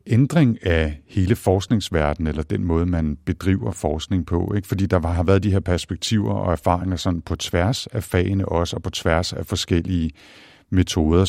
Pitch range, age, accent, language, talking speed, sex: 80-100 Hz, 60-79, Danish, English, 175 wpm, male